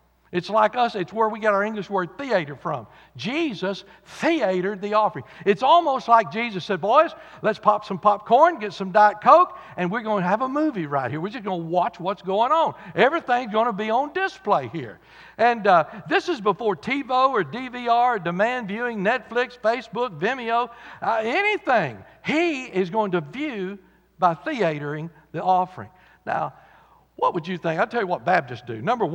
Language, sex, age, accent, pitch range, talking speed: English, male, 60-79, American, 165-230 Hz, 185 wpm